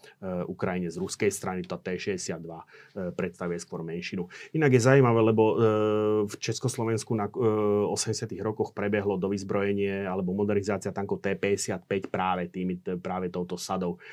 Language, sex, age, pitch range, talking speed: Slovak, male, 30-49, 100-115 Hz, 150 wpm